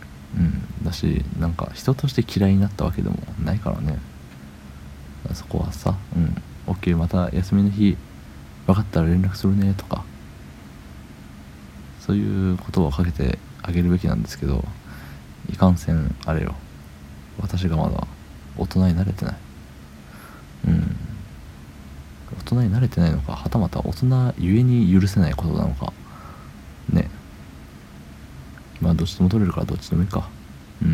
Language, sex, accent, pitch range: Japanese, male, native, 70-95 Hz